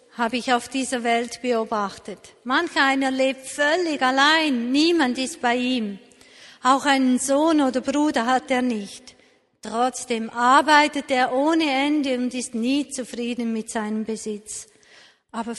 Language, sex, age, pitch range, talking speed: German, female, 50-69, 230-265 Hz, 140 wpm